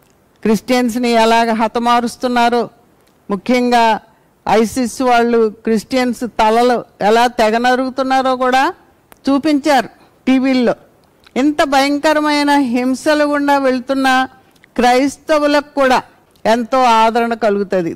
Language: Telugu